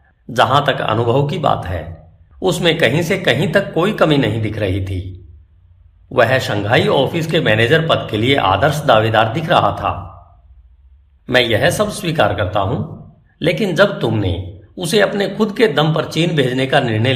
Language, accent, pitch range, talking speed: Hindi, native, 95-155 Hz, 170 wpm